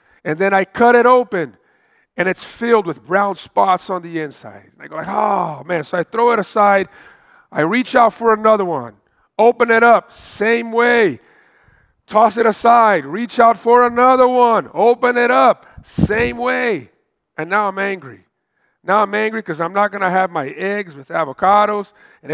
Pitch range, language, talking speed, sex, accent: 185-230 Hz, English, 185 wpm, male, American